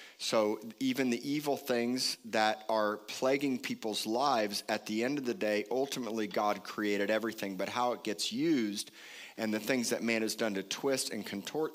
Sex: male